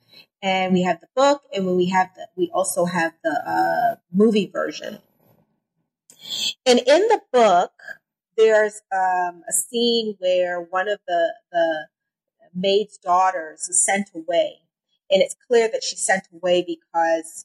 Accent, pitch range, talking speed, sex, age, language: American, 180-250 Hz, 150 wpm, female, 30-49, English